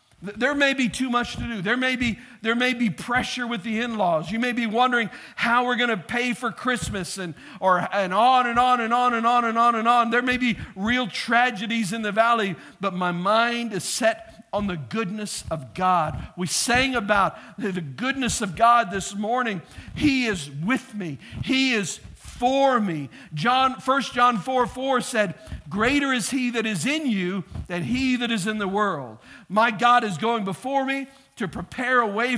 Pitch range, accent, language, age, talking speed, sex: 190-245 Hz, American, English, 50-69, 200 wpm, male